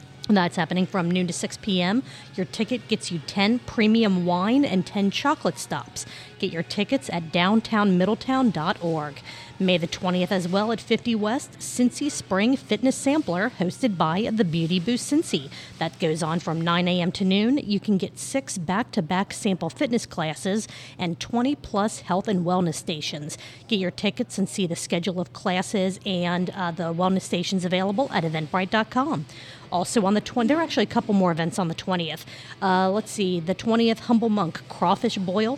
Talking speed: 175 wpm